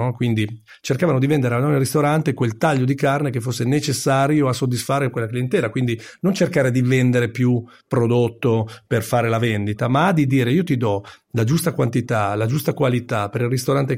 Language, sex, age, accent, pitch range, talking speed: Italian, male, 40-59, native, 115-145 Hz, 185 wpm